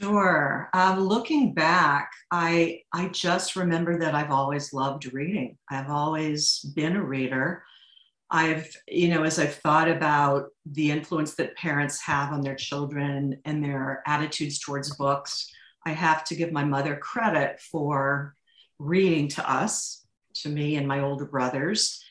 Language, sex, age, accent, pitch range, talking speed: English, female, 50-69, American, 140-175 Hz, 150 wpm